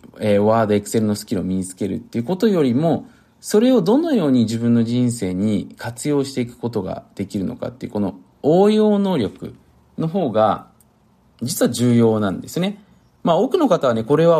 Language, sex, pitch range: Japanese, male, 105-165 Hz